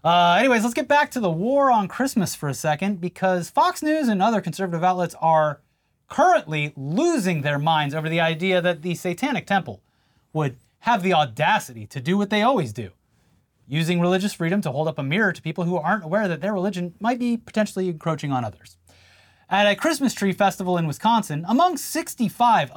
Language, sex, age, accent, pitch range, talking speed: English, male, 30-49, American, 150-210 Hz, 190 wpm